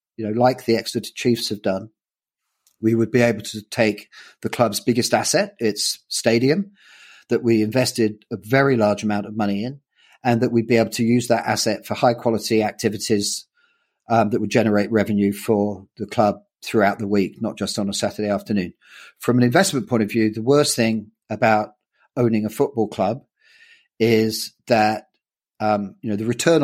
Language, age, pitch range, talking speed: English, 40-59, 110-135 Hz, 180 wpm